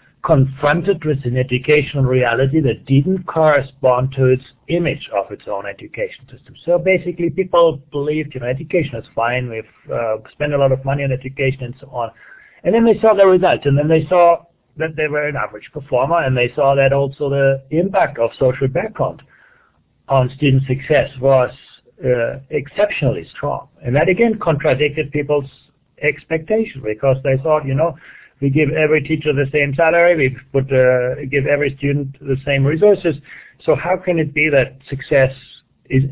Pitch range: 135-160 Hz